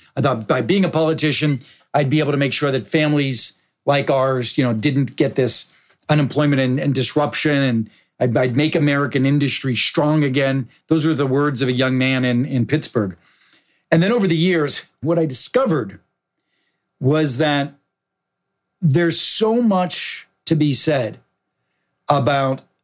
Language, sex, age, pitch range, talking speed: English, male, 50-69, 130-155 Hz, 160 wpm